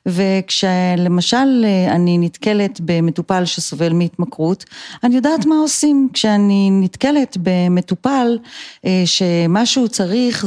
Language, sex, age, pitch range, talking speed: Hebrew, female, 40-59, 180-230 Hz, 90 wpm